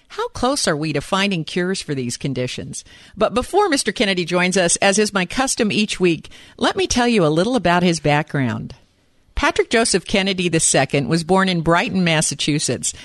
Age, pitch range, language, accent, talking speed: 50-69, 160-225 Hz, English, American, 185 wpm